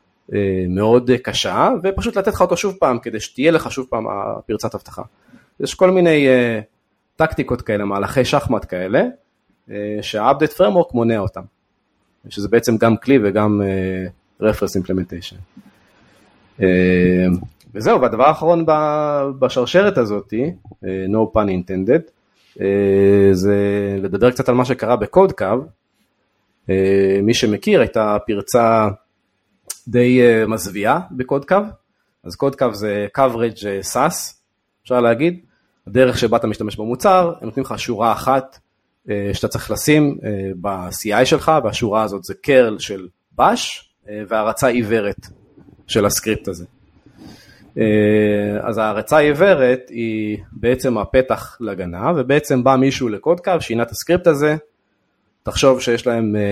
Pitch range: 100-130 Hz